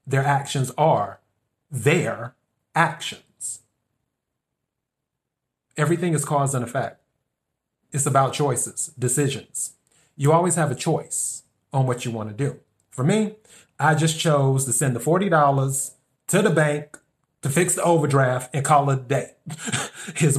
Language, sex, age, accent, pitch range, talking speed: English, male, 30-49, American, 130-155 Hz, 135 wpm